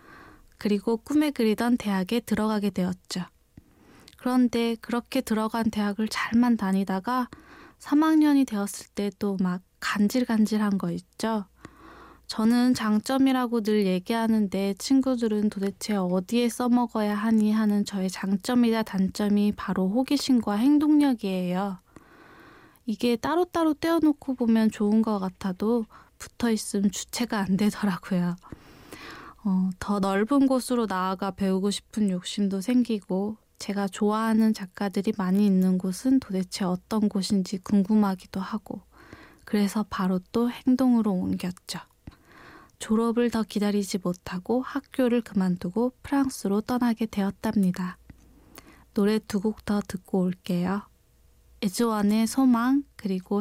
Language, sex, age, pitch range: Korean, female, 20-39, 195-240 Hz